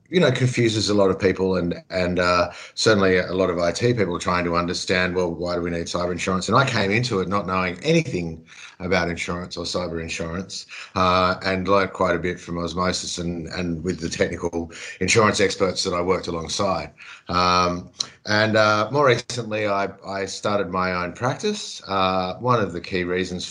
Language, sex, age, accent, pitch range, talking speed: English, male, 50-69, Australian, 85-100 Hz, 190 wpm